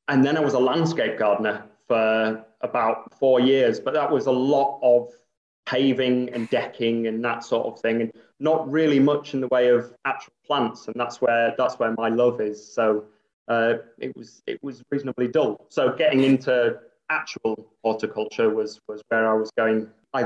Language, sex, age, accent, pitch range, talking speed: English, male, 30-49, British, 115-135 Hz, 185 wpm